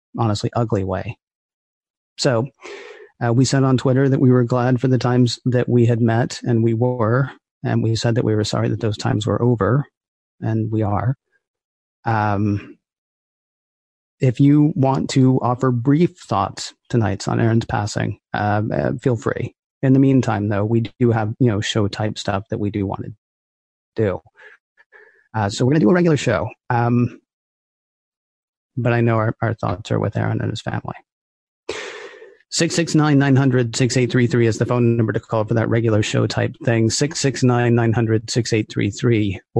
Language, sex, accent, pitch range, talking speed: English, male, American, 115-140 Hz, 160 wpm